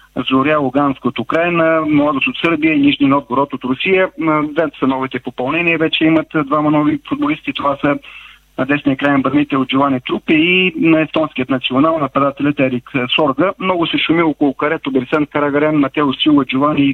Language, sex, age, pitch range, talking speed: Bulgarian, male, 40-59, 135-170 Hz, 165 wpm